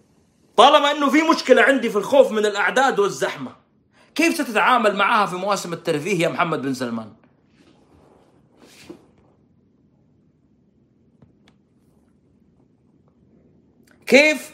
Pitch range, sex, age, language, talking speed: 190-265 Hz, male, 30-49, Arabic, 85 wpm